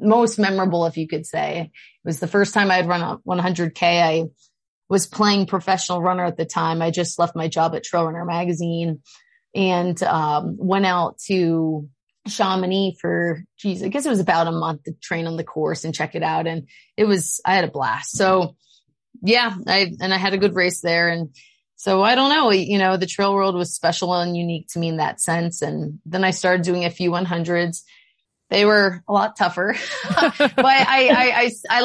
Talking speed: 210 wpm